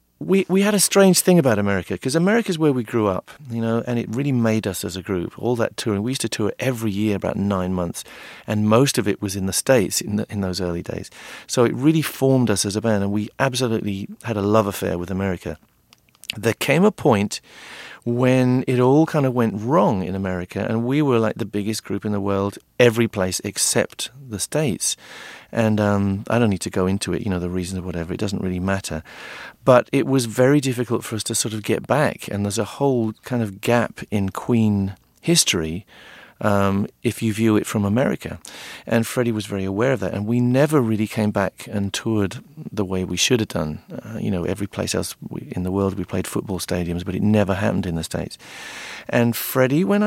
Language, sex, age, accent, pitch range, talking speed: English, male, 40-59, British, 95-125 Hz, 225 wpm